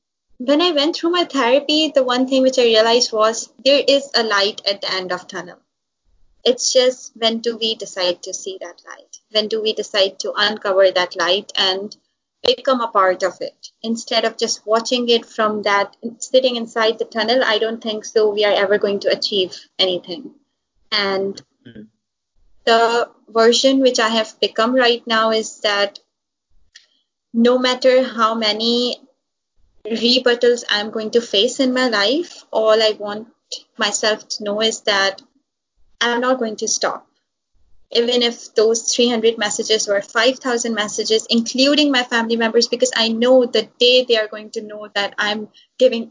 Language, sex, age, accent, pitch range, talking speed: English, female, 20-39, Indian, 210-255 Hz, 170 wpm